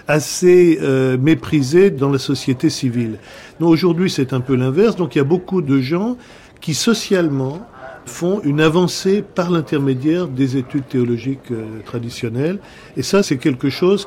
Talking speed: 160 wpm